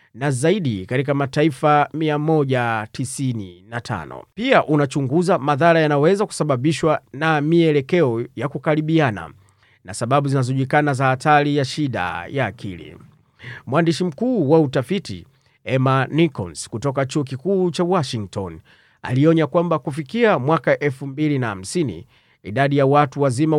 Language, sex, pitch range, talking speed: Swahili, male, 120-155 Hz, 110 wpm